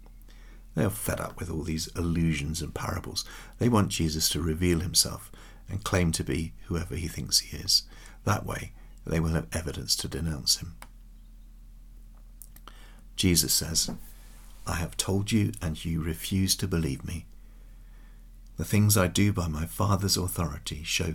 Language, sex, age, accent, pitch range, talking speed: English, male, 50-69, British, 85-110 Hz, 155 wpm